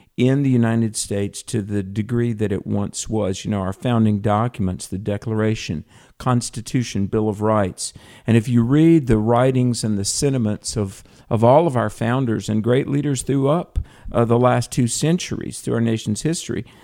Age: 50-69